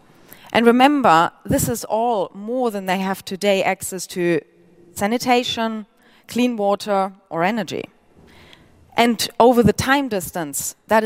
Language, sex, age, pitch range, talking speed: English, female, 30-49, 190-240 Hz, 125 wpm